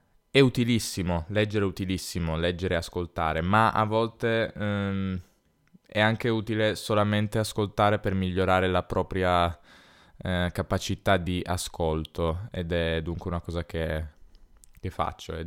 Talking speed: 130 wpm